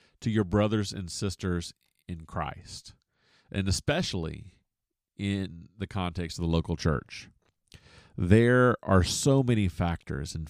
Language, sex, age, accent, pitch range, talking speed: English, male, 40-59, American, 85-110 Hz, 125 wpm